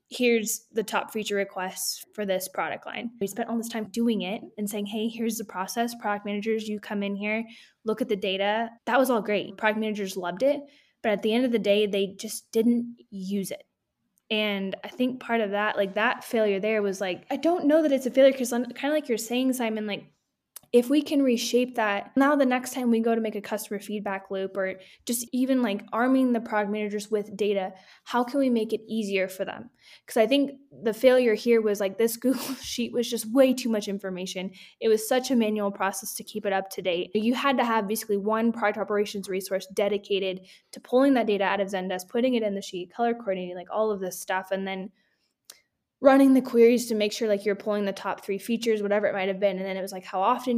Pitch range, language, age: 200-235 Hz, English, 10-29